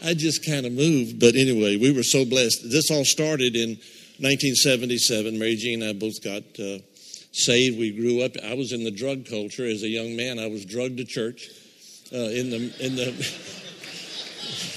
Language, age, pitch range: English, 60-79, 120-150 Hz